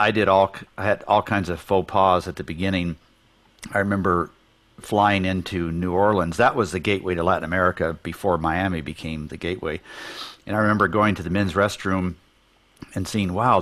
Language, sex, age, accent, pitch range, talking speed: English, male, 50-69, American, 85-105 Hz, 185 wpm